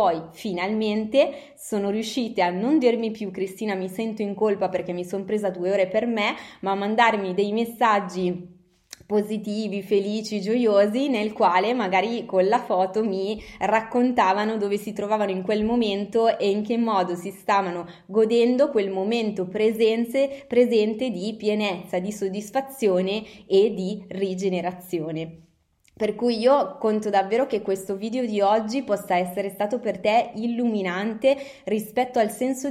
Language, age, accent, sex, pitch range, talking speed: Italian, 20-39, native, female, 195-230 Hz, 145 wpm